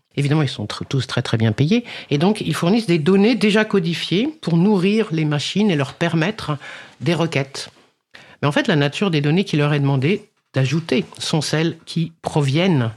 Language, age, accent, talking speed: French, 50-69, French, 190 wpm